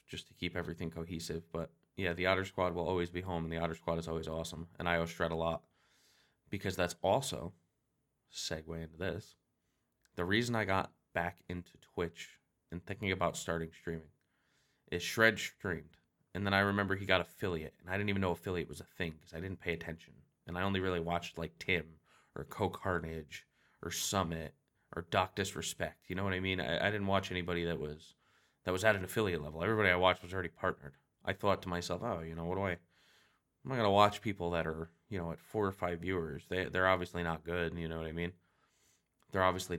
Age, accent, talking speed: 20-39, American, 215 wpm